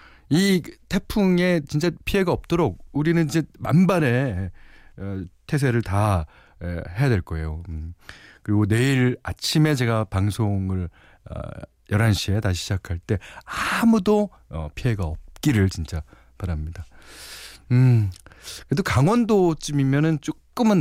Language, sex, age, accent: Korean, male, 40-59, native